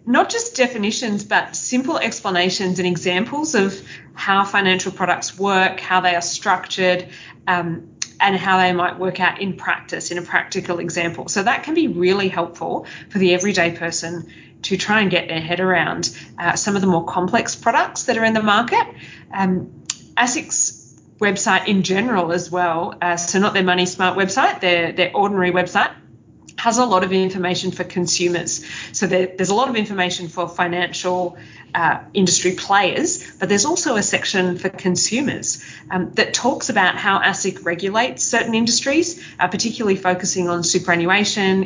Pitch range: 175-200 Hz